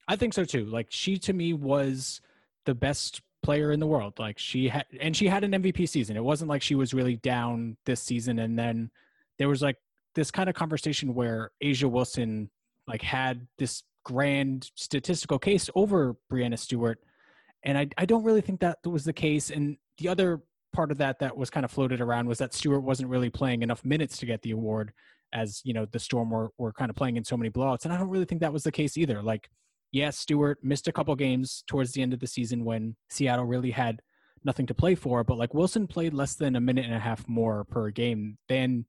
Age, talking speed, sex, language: 20-39, 230 wpm, male, English